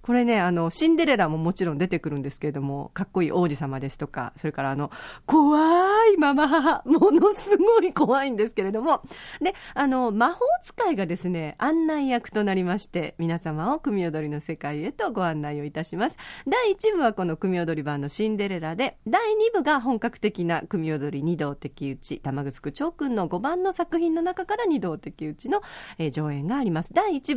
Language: Japanese